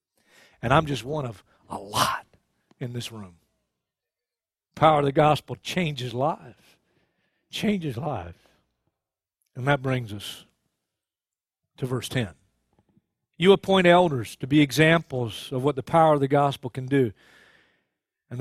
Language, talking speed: English, 135 wpm